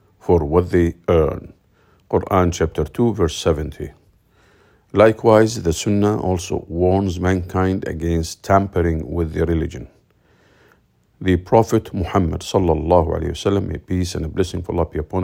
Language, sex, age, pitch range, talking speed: English, male, 50-69, 85-100 Hz, 125 wpm